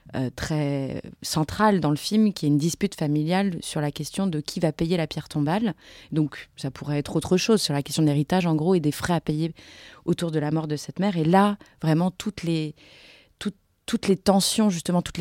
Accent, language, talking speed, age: French, French, 225 wpm, 30-49